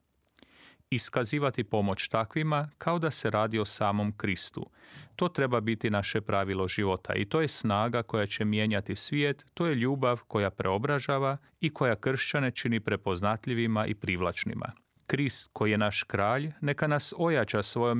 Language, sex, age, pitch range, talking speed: Croatian, male, 40-59, 105-135 Hz, 150 wpm